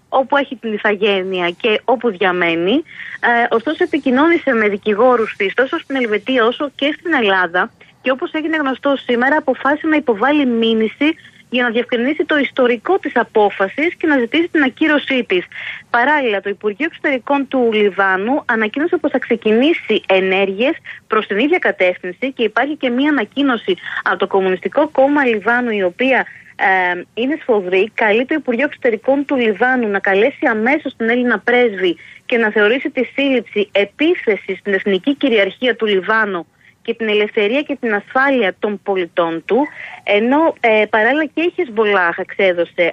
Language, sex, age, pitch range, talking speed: Greek, female, 30-49, 205-285 Hz, 155 wpm